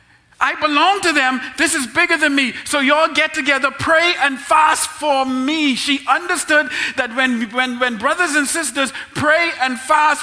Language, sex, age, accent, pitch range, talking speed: English, male, 40-59, American, 245-285 Hz, 175 wpm